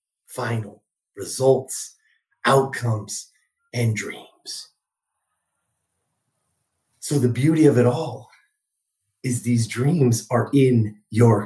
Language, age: English, 30-49